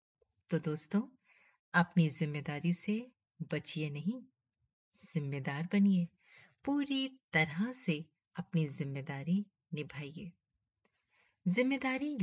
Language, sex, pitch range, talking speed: Hindi, female, 155-215 Hz, 80 wpm